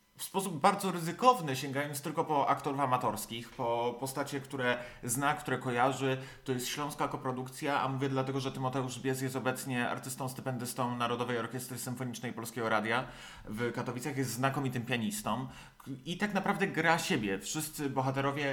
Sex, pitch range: male, 120-140 Hz